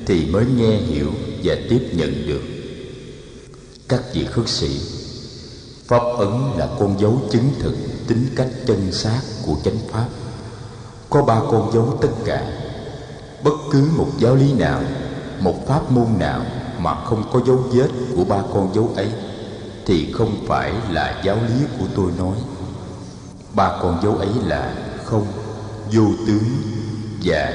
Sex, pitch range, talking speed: male, 100-125 Hz, 150 wpm